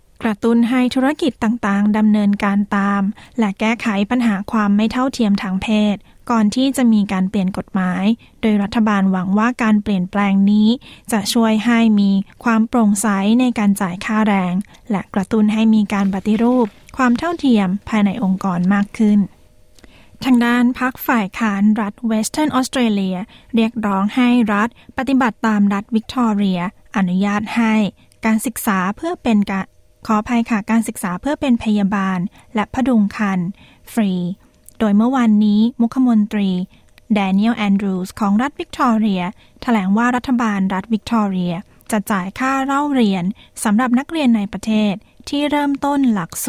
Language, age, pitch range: Thai, 20-39, 200-235 Hz